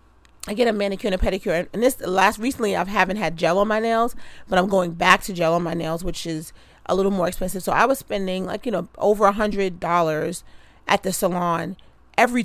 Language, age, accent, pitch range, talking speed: English, 40-59, American, 175-215 Hz, 230 wpm